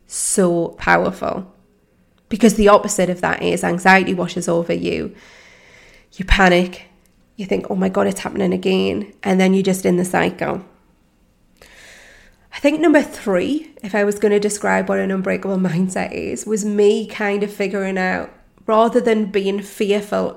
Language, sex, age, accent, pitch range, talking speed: English, female, 30-49, British, 190-220 Hz, 160 wpm